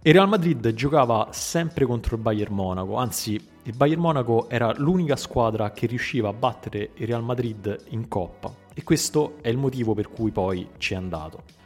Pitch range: 100-130 Hz